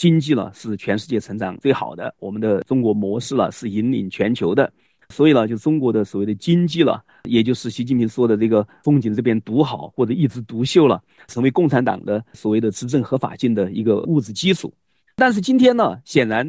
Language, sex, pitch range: Chinese, male, 110-150 Hz